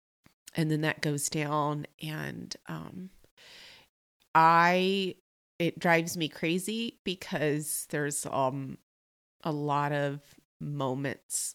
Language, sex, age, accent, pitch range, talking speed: English, female, 30-49, American, 150-180 Hz, 100 wpm